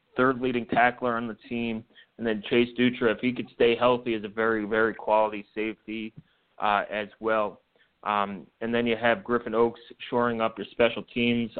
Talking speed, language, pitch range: 185 wpm, English, 110-125 Hz